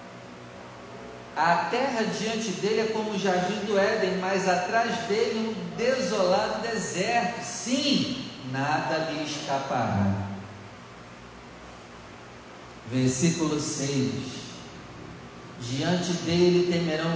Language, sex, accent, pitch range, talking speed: Portuguese, male, Brazilian, 115-190 Hz, 85 wpm